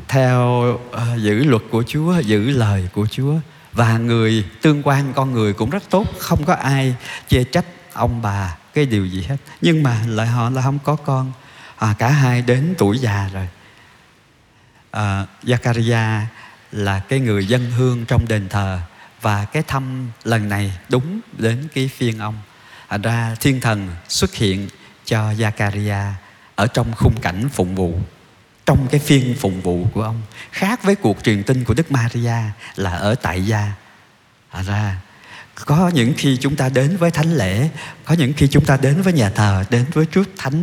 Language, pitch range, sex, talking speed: Vietnamese, 105-140 Hz, male, 180 wpm